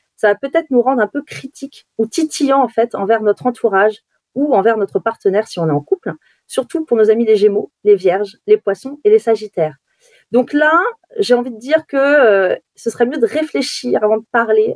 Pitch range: 210-275 Hz